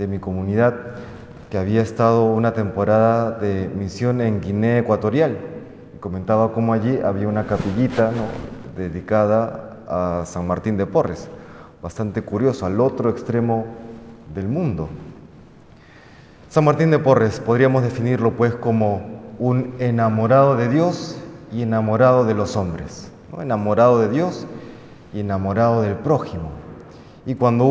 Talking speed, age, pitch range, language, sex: 130 wpm, 30-49, 105-125 Hz, Spanish, male